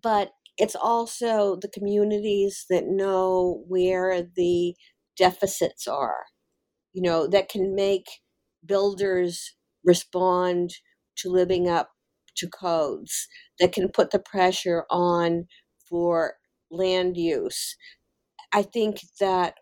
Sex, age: female, 50-69